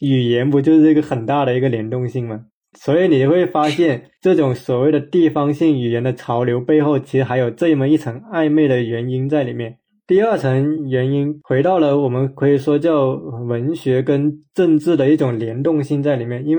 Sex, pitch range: male, 130-160 Hz